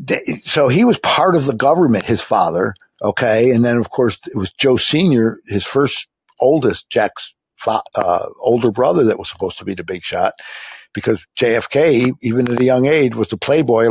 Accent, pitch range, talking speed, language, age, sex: American, 115-150 Hz, 185 wpm, English, 60-79, male